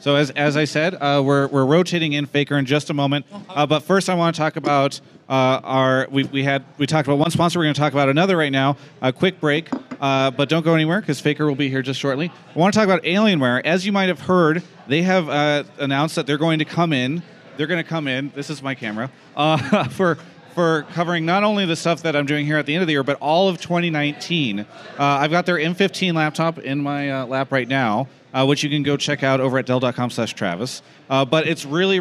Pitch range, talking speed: 135-165 Hz, 255 wpm